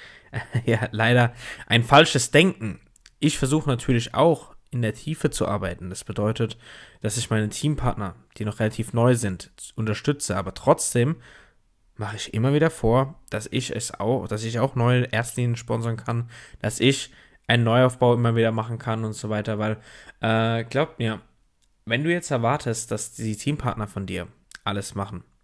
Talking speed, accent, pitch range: 165 wpm, German, 110-140 Hz